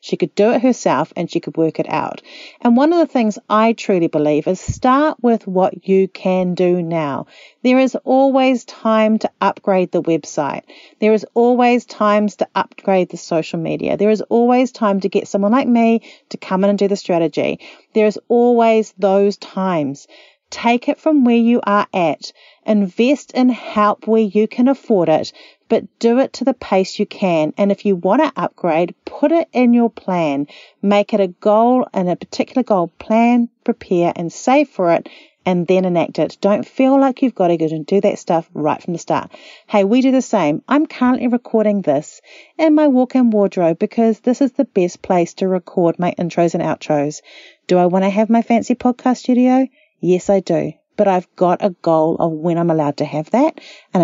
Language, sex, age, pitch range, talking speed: English, female, 40-59, 175-240 Hz, 200 wpm